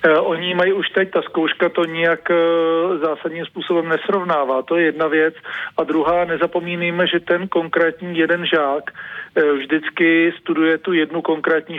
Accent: native